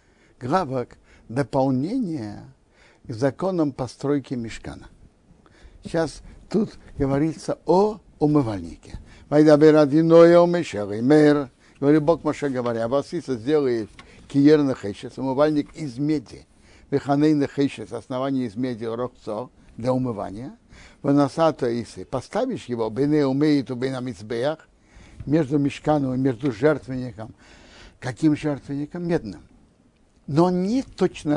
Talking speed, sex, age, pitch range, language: 95 wpm, male, 60-79, 115-155 Hz, Russian